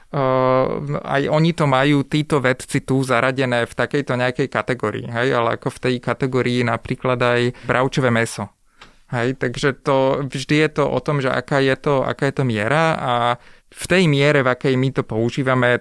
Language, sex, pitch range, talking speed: Slovak, male, 125-140 Hz, 180 wpm